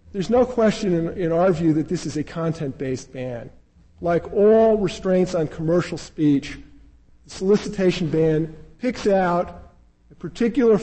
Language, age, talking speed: English, 50-69, 145 wpm